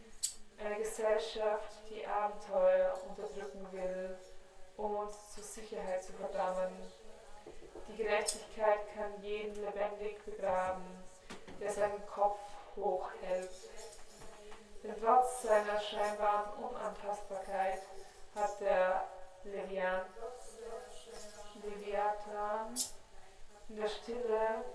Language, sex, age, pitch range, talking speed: German, female, 20-39, 205-220 Hz, 80 wpm